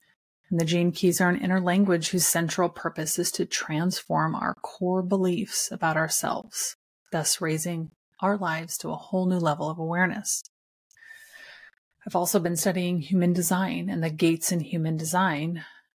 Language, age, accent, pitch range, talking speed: English, 30-49, American, 160-205 Hz, 160 wpm